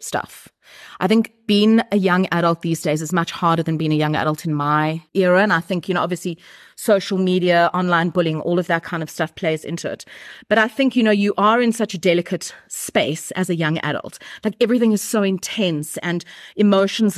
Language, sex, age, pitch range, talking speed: English, female, 30-49, 170-210 Hz, 215 wpm